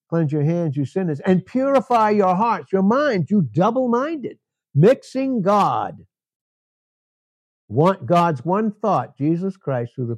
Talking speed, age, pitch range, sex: 135 wpm, 60-79, 130-180 Hz, male